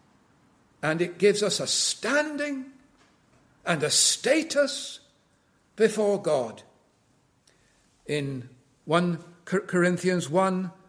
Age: 60-79